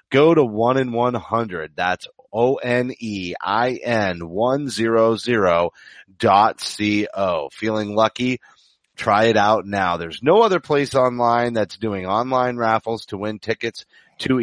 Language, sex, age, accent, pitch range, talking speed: English, male, 30-49, American, 105-130 Hz, 135 wpm